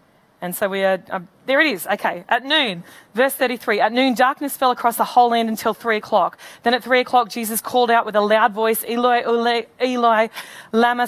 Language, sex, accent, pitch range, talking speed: English, female, Australian, 220-265 Hz, 205 wpm